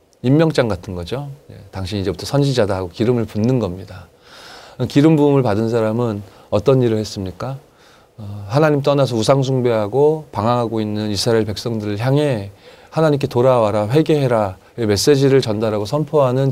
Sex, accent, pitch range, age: male, native, 110-150 Hz, 30-49